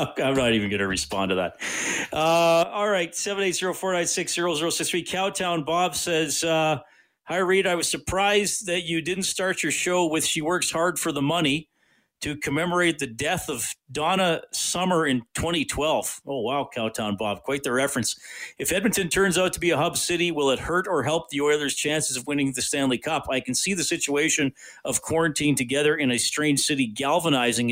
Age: 40-59